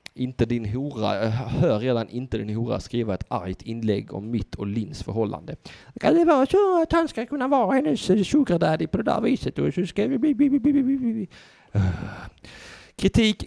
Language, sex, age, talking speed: Swedish, male, 30-49, 150 wpm